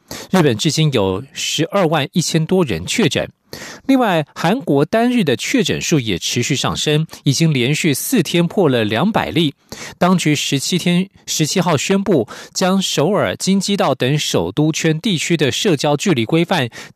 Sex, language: male, German